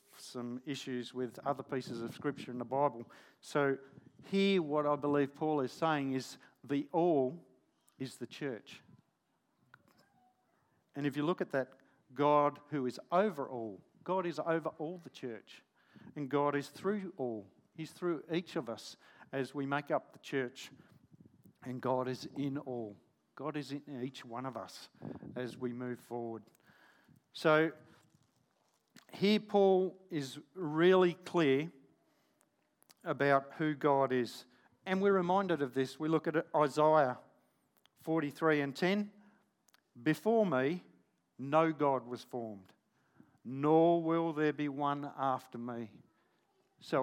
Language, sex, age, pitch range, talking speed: English, male, 50-69, 130-165 Hz, 140 wpm